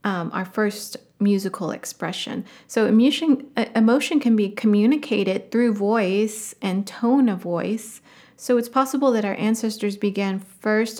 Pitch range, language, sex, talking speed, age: 195-230 Hz, English, female, 140 wpm, 30-49